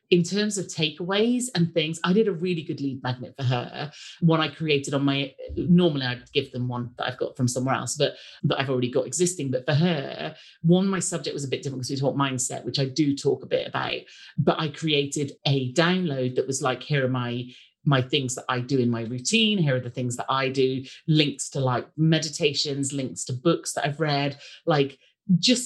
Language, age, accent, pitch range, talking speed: English, 30-49, British, 135-175 Hz, 225 wpm